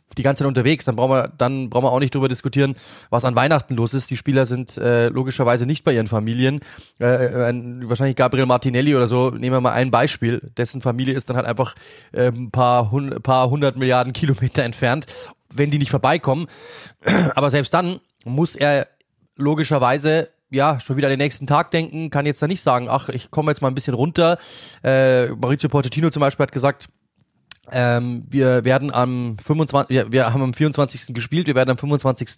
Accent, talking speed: German, 200 wpm